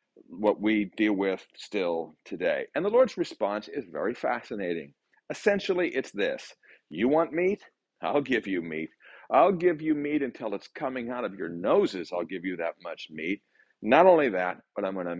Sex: male